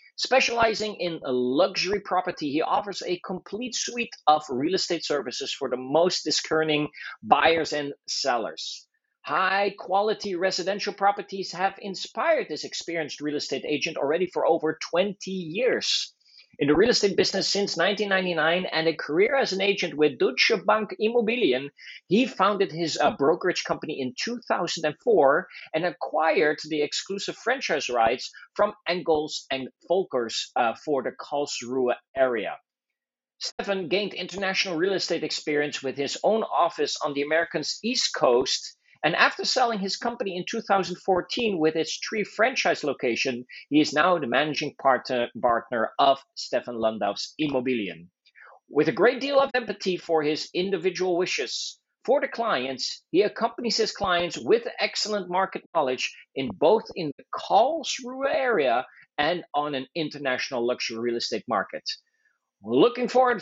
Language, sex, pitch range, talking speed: English, male, 150-220 Hz, 145 wpm